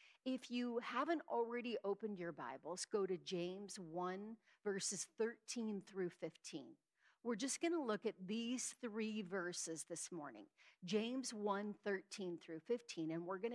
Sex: female